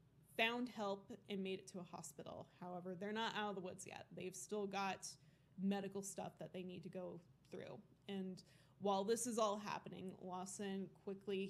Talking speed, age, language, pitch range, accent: 185 wpm, 20-39, English, 175-205 Hz, American